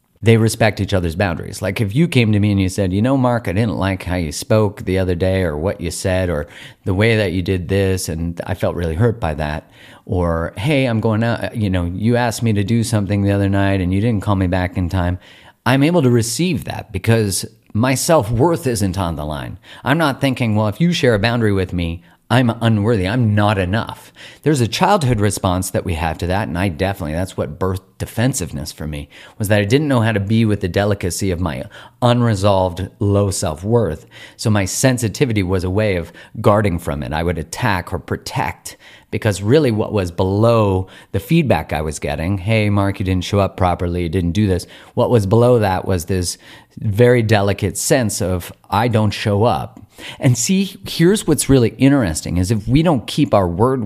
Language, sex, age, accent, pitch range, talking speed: English, male, 40-59, American, 90-115 Hz, 215 wpm